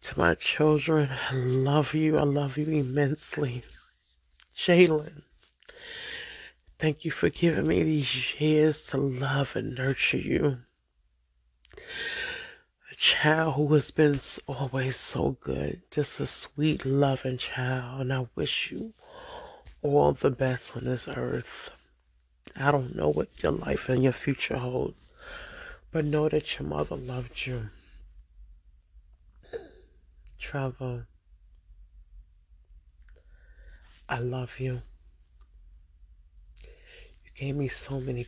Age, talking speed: 30-49, 115 wpm